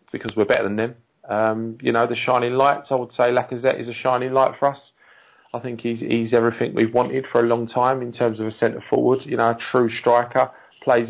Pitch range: 100-120 Hz